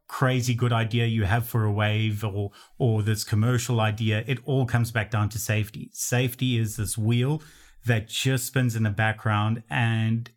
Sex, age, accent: male, 30-49, Australian